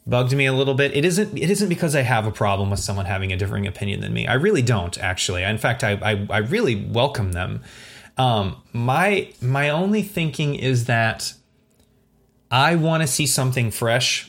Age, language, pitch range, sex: 30-49, English, 105-140 Hz, male